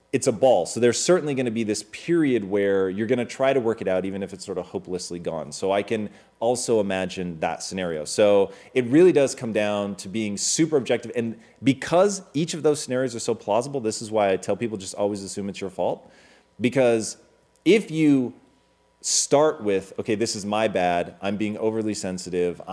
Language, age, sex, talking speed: English, 30-49, male, 210 wpm